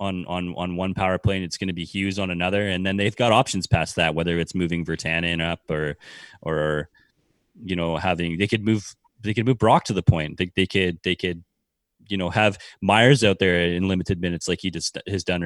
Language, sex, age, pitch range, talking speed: English, male, 20-39, 85-105 Hz, 220 wpm